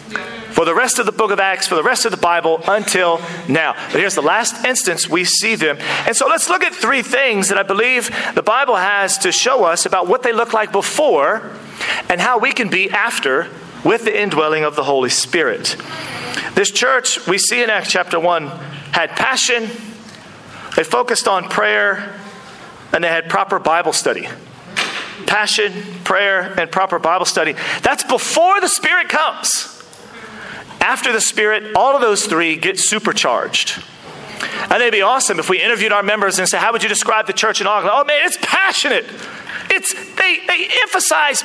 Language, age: English, 40-59